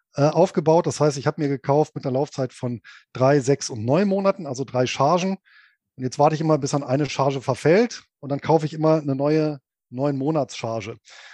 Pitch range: 130-160 Hz